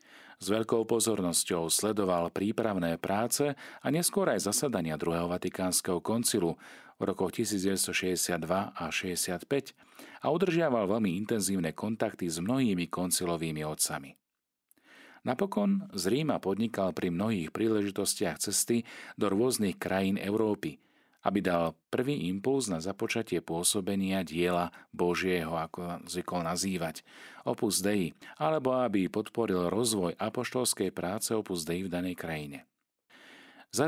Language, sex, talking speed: Slovak, male, 115 wpm